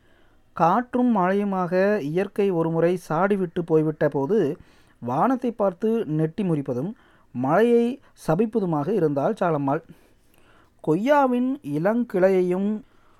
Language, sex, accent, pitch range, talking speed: Tamil, male, native, 165-220 Hz, 75 wpm